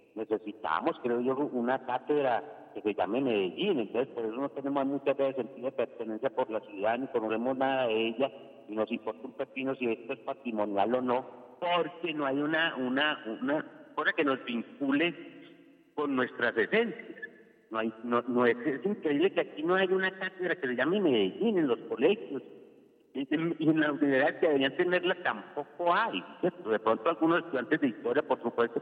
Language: Spanish